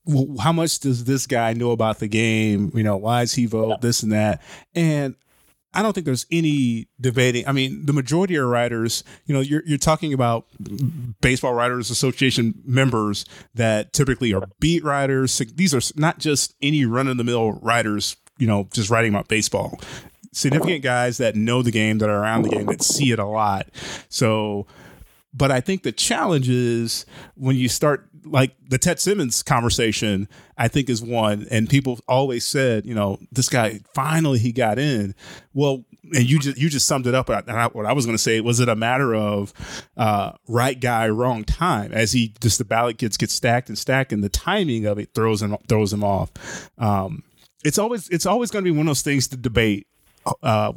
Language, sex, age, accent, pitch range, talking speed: English, male, 30-49, American, 110-140 Hz, 200 wpm